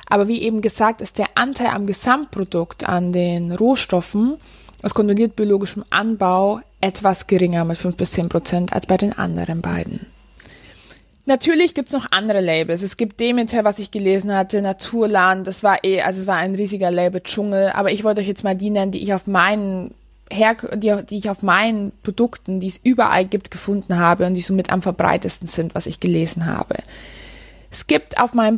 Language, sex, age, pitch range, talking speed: German, female, 20-39, 190-225 Hz, 190 wpm